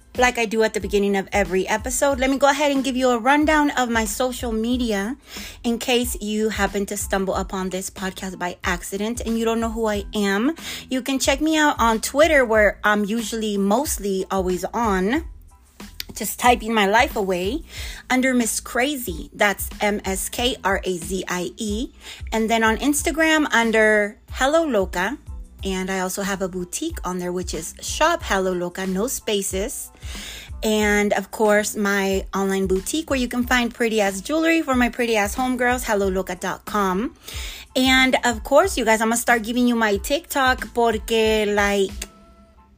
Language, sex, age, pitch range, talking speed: English, female, 30-49, 195-255 Hz, 165 wpm